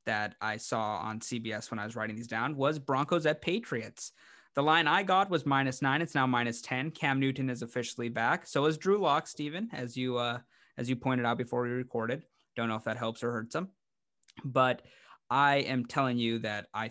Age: 20-39